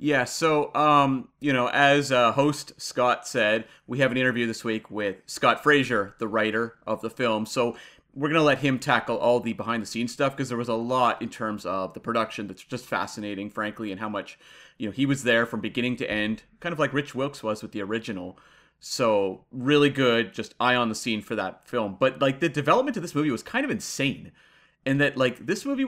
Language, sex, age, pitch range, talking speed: English, male, 30-49, 115-150 Hz, 225 wpm